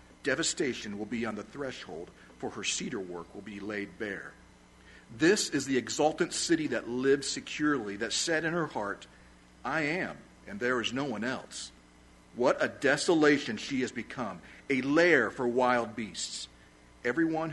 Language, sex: English, male